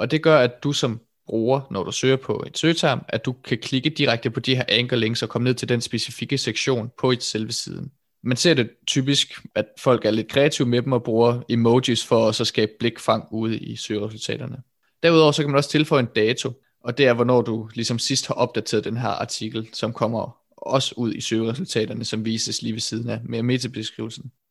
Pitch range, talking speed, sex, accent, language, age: 110-130 Hz, 220 wpm, male, native, Danish, 20-39